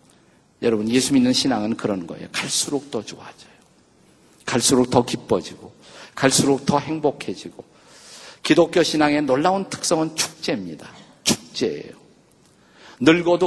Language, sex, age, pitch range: Korean, male, 50-69, 130-170 Hz